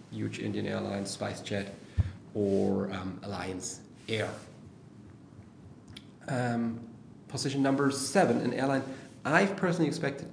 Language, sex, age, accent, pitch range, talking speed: English, male, 30-49, German, 105-130 Hz, 100 wpm